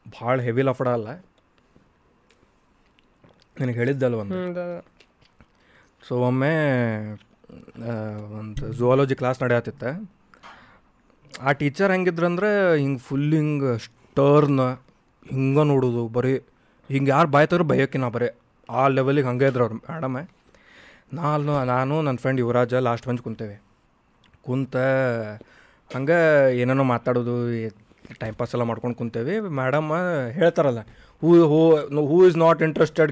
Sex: male